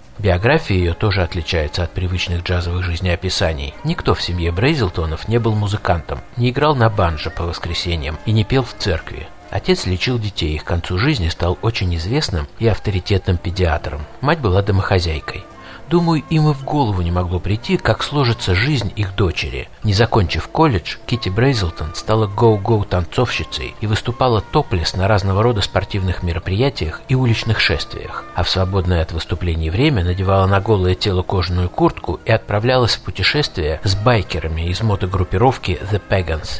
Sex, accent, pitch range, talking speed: male, native, 90-110 Hz, 160 wpm